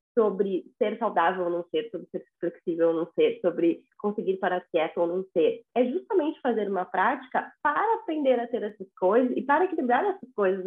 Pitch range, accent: 195-285 Hz, Brazilian